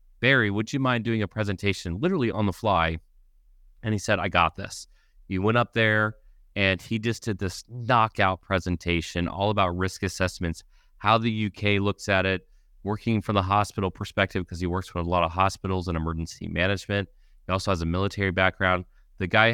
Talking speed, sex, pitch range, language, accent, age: 190 wpm, male, 90-110 Hz, English, American, 30-49